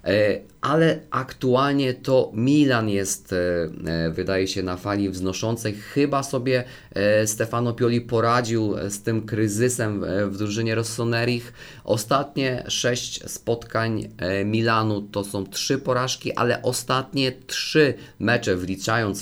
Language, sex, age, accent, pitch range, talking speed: Polish, male, 30-49, native, 95-120 Hz, 105 wpm